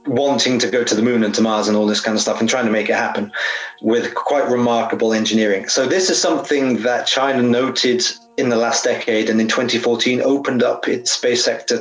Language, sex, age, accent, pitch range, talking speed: English, male, 30-49, British, 115-130 Hz, 225 wpm